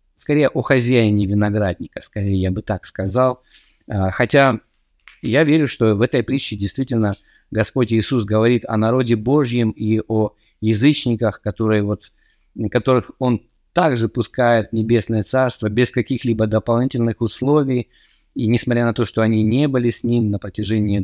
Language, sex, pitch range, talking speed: Russian, male, 105-125 Hz, 140 wpm